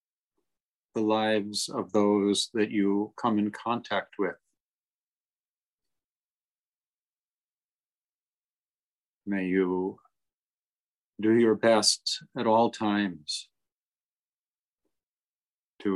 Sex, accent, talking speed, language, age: male, American, 70 wpm, English, 50-69